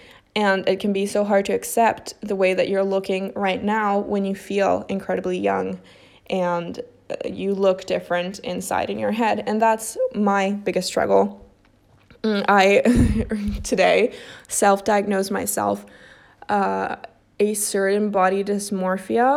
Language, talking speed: English, 130 wpm